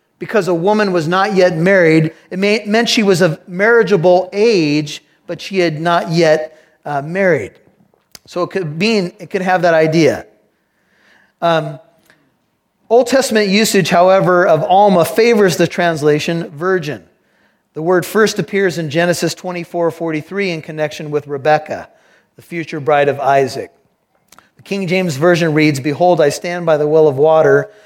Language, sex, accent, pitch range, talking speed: English, male, American, 155-185 Hz, 155 wpm